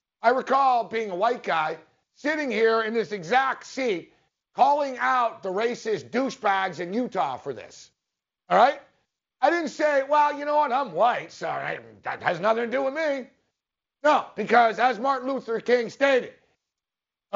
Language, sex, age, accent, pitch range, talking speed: English, male, 50-69, American, 225-290 Hz, 170 wpm